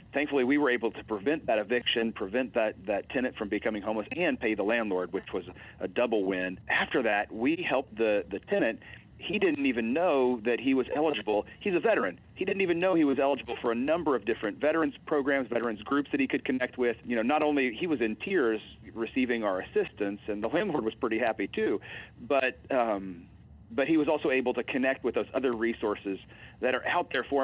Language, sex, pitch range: English, male, 105-140 Hz